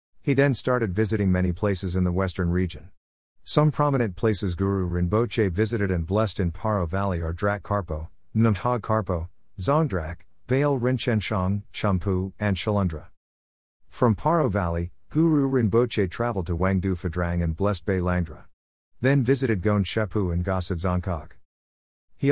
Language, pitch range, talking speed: English, 85-110 Hz, 135 wpm